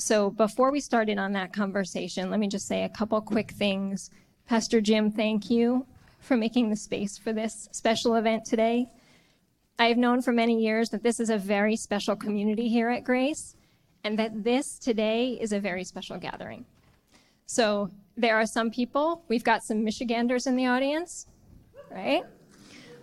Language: English